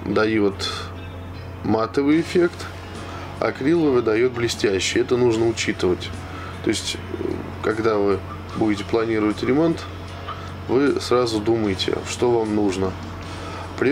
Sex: male